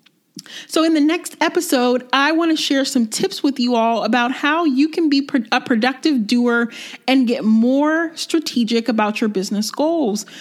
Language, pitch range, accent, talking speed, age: English, 235-290 Hz, American, 175 wpm, 30-49